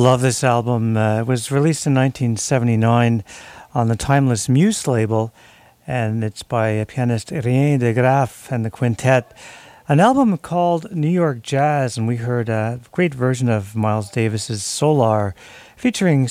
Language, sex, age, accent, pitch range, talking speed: German, male, 50-69, American, 115-150 Hz, 150 wpm